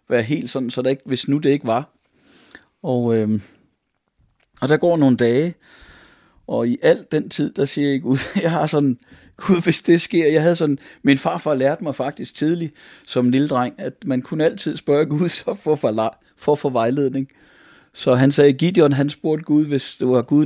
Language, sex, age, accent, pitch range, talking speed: Danish, male, 30-49, native, 120-150 Hz, 195 wpm